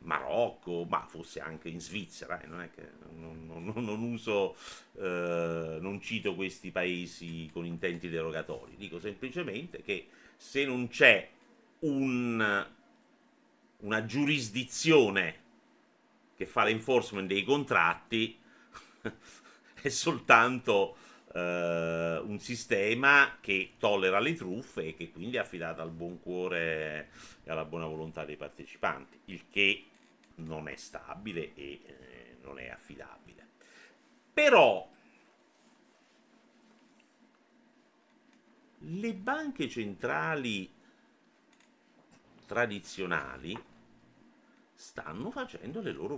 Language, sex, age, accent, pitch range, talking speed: Italian, male, 50-69, native, 85-140 Hz, 100 wpm